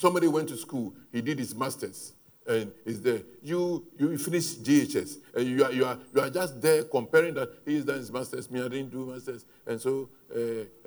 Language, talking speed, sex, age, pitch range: English, 210 wpm, male, 60-79, 140-185 Hz